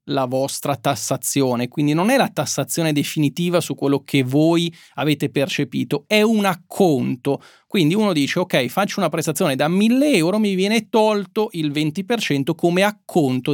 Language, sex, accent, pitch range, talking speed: Italian, male, native, 140-175 Hz, 155 wpm